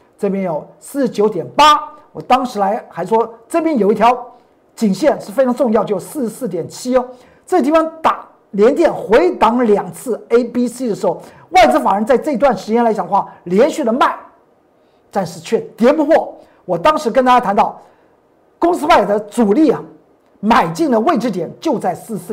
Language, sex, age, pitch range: Chinese, male, 50-69, 195-285 Hz